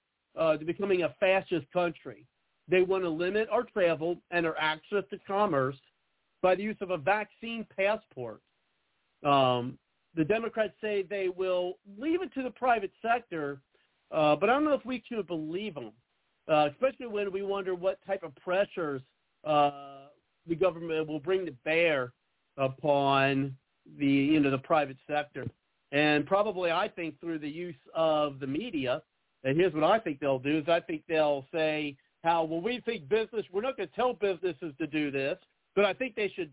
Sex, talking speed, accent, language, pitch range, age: male, 180 wpm, American, English, 150-195 Hz, 50-69